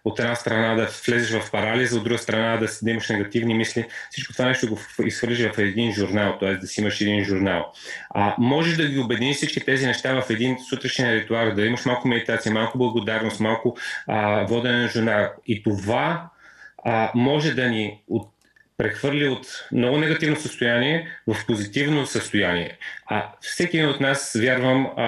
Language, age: Bulgarian, 30-49